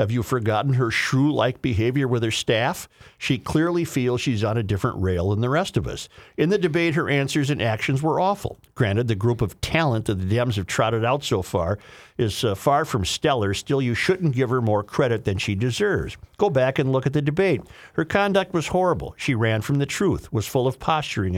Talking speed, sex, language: 220 wpm, male, English